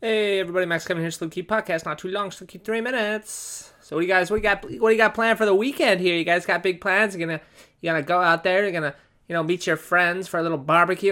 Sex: male